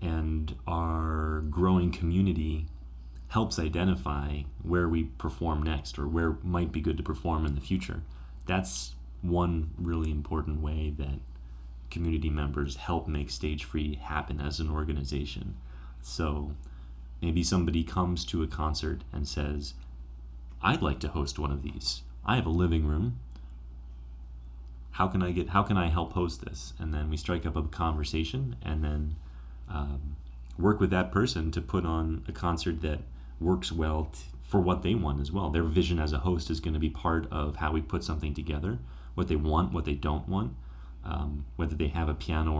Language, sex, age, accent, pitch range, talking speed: English, male, 30-49, American, 70-85 Hz, 175 wpm